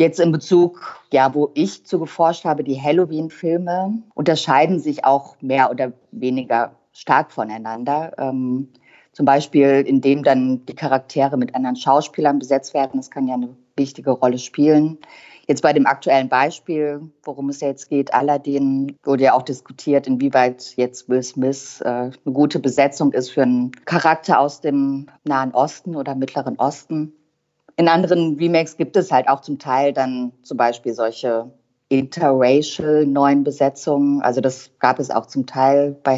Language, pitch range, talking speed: German, 130-150 Hz, 160 wpm